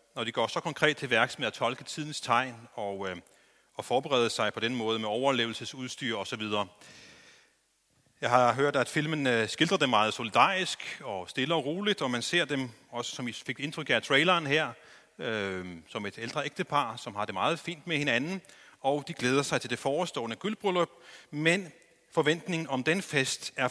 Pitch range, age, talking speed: 120-165 Hz, 30-49, 185 wpm